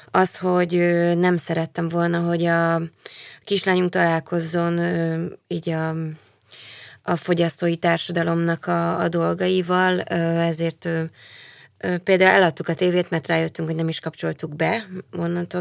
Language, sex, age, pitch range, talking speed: Hungarian, female, 20-39, 165-180 Hz, 115 wpm